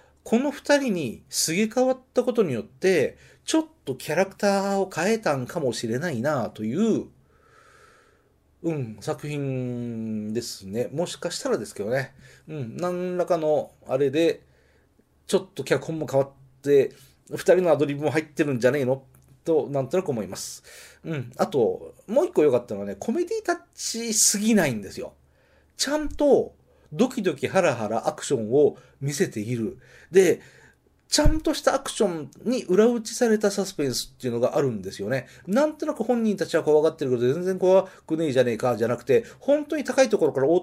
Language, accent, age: Japanese, native, 40-59